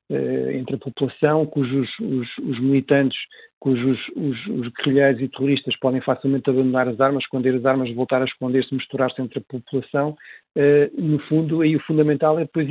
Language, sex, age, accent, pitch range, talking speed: Portuguese, male, 50-69, Portuguese, 135-155 Hz, 160 wpm